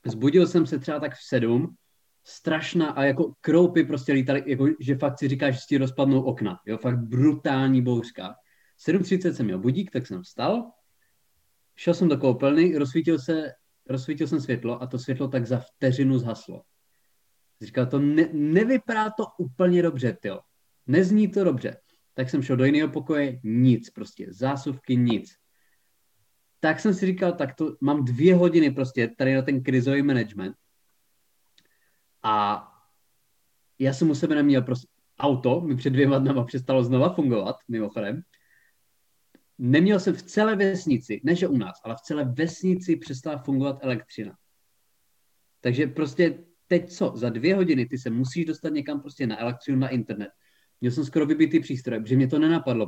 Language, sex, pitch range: Czech, male, 125-160 Hz